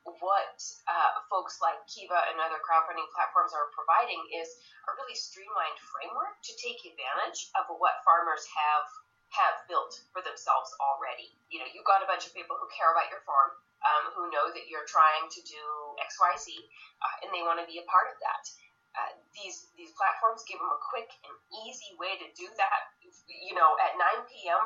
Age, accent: 30-49, American